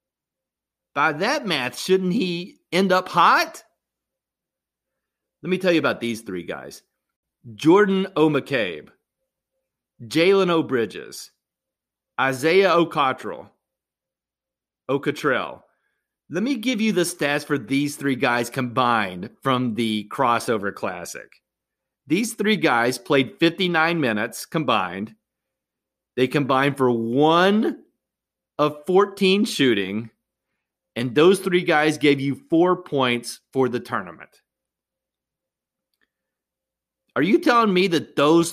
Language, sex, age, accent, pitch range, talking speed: English, male, 40-59, American, 130-175 Hz, 105 wpm